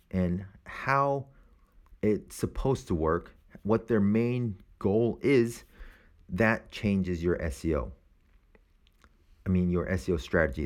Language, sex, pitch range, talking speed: English, male, 85-110 Hz, 115 wpm